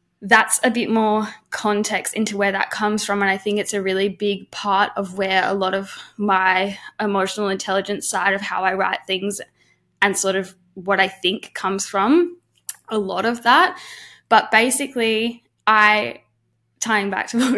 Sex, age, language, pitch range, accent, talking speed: female, 10-29, English, 195-225 Hz, Australian, 175 wpm